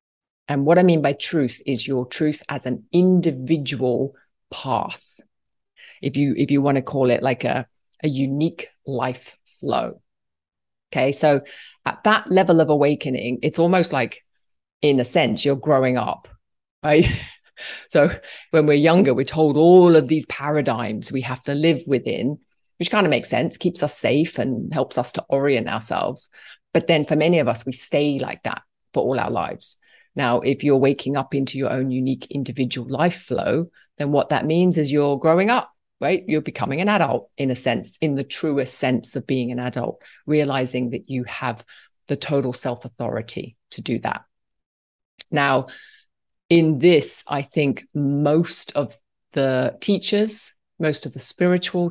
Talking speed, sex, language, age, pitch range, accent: 170 wpm, female, English, 30-49, 130-160 Hz, British